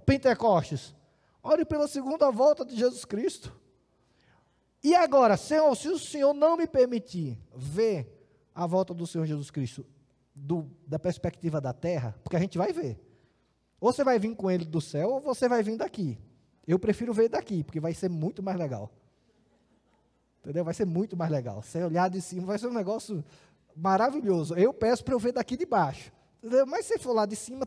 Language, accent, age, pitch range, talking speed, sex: Portuguese, Brazilian, 20-39, 135-205 Hz, 185 wpm, male